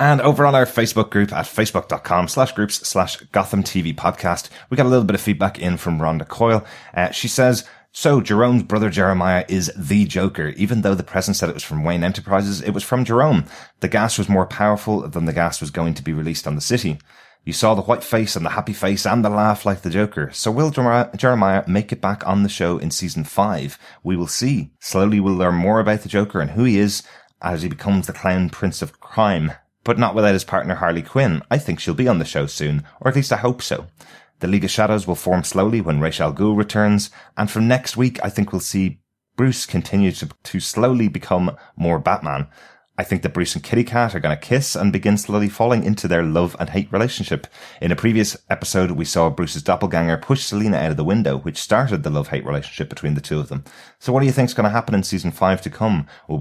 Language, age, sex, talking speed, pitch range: English, 30-49, male, 235 wpm, 90-115 Hz